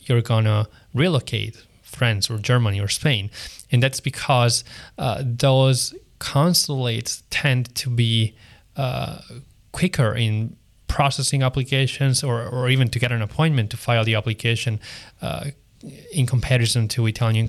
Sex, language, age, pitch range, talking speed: male, English, 20-39, 110-130 Hz, 130 wpm